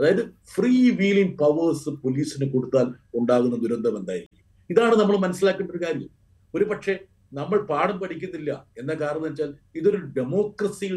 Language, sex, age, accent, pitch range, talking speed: Malayalam, male, 50-69, native, 135-180 Hz, 125 wpm